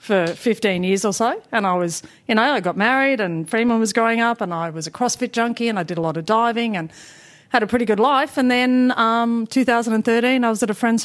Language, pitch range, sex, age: English, 180-235 Hz, female, 40-59